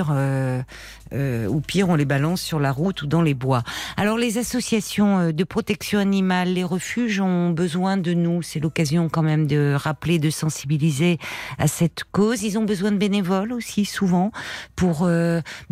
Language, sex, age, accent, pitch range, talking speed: French, female, 50-69, French, 150-185 Hz, 175 wpm